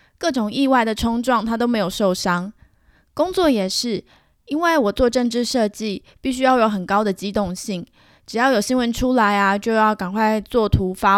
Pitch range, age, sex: 200-255 Hz, 20-39, female